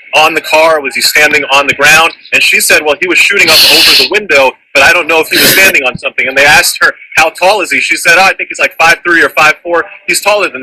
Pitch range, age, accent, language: 145-205 Hz, 30-49, American, English